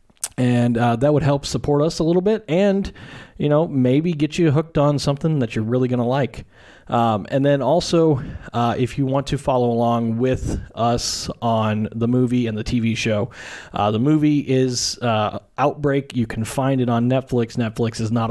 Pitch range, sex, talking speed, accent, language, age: 115-140 Hz, male, 195 wpm, American, English, 30-49